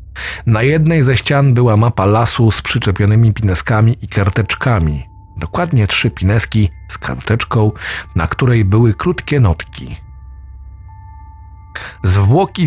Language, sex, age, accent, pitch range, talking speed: Polish, male, 40-59, native, 90-115 Hz, 110 wpm